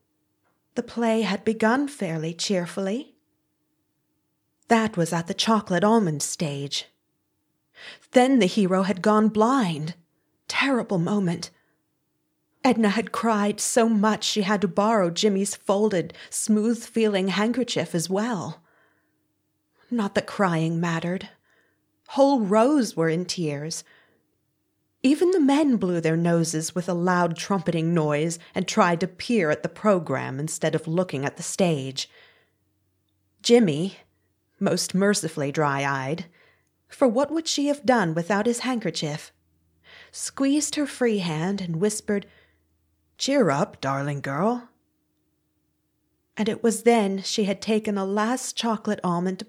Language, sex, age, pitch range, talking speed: English, female, 30-49, 160-220 Hz, 125 wpm